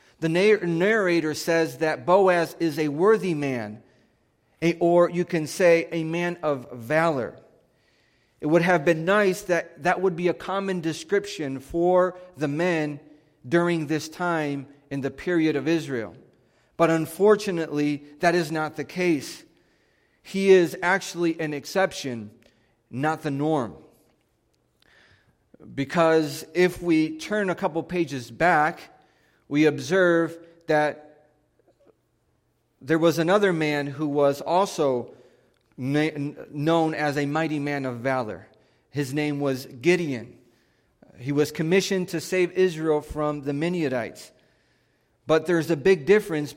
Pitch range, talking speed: 140-175 Hz, 125 wpm